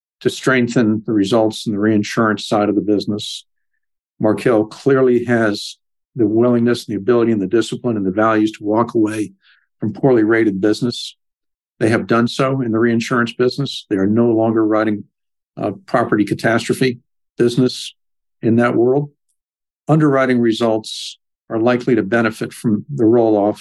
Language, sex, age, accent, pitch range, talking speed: English, male, 50-69, American, 105-130 Hz, 155 wpm